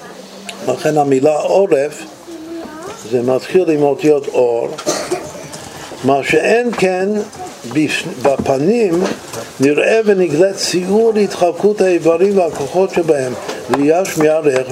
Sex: male